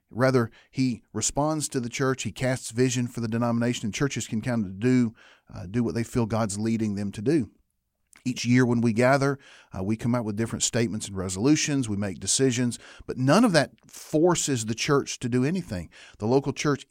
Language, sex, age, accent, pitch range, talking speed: English, male, 40-59, American, 110-140 Hz, 205 wpm